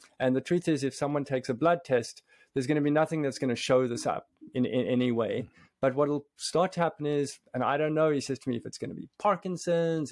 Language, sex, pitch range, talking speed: English, male, 125-155 Hz, 275 wpm